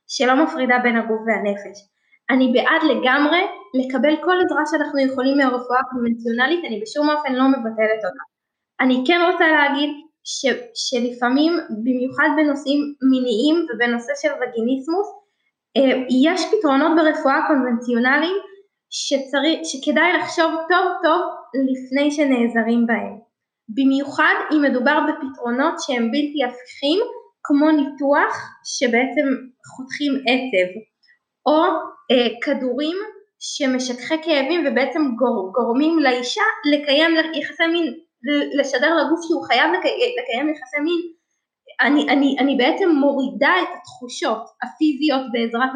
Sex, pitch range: female, 255-320 Hz